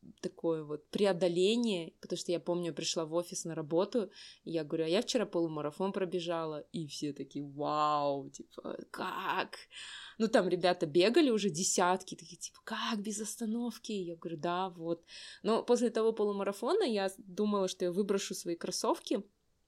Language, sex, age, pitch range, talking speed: Russian, female, 20-39, 175-215 Hz, 155 wpm